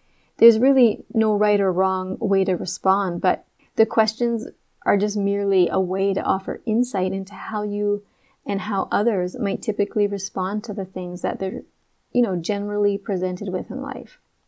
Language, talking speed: English, 170 wpm